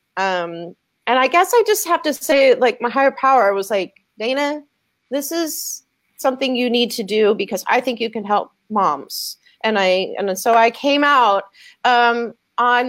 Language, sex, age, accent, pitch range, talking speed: English, female, 30-49, American, 215-290 Hz, 180 wpm